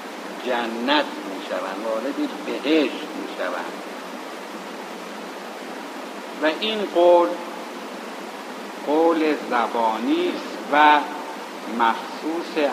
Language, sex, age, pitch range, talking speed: Persian, male, 60-79, 130-185 Hz, 70 wpm